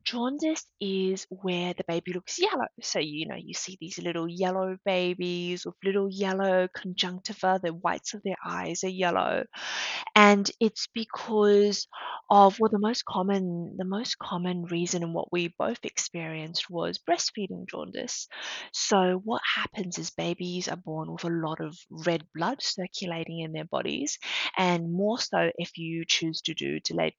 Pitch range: 170-205 Hz